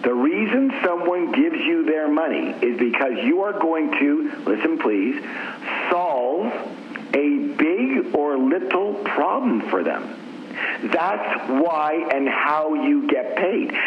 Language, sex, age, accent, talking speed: English, male, 50-69, American, 130 wpm